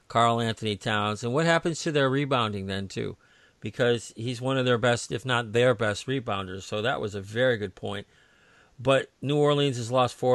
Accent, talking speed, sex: American, 205 wpm, male